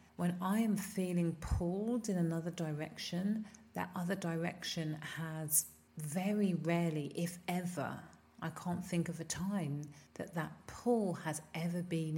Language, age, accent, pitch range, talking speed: English, 30-49, British, 160-195 Hz, 140 wpm